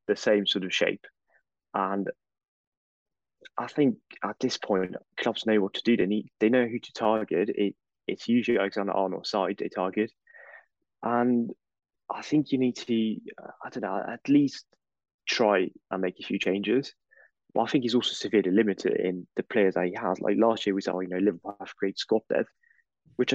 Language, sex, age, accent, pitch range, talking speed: English, male, 20-39, British, 100-120 Hz, 190 wpm